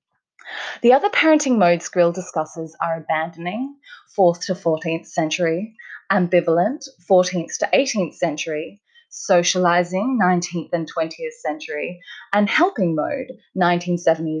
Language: English